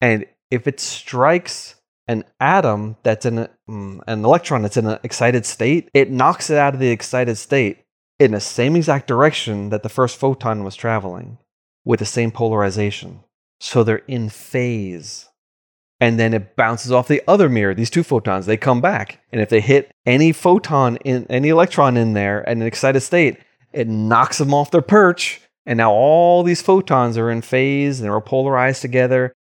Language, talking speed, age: English, 185 wpm, 30-49